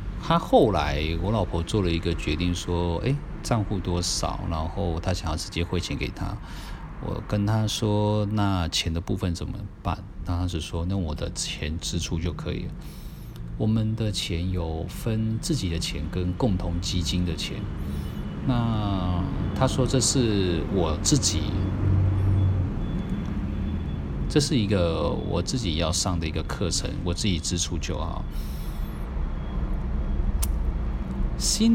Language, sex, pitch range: Chinese, male, 85-105 Hz